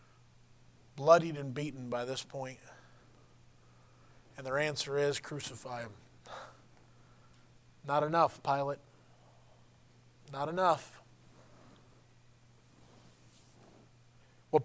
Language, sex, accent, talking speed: English, male, American, 75 wpm